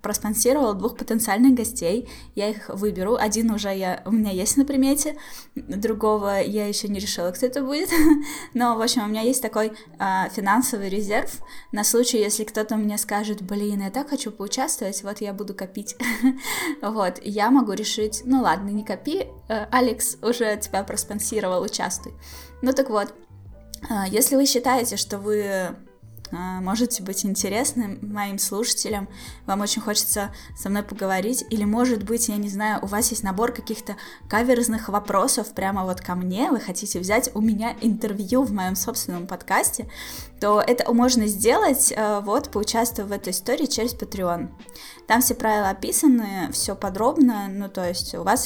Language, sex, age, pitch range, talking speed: Russian, female, 10-29, 200-245 Hz, 160 wpm